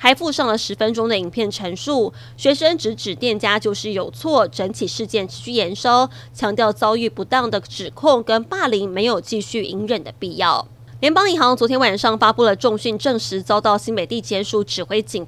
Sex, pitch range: female, 200-240 Hz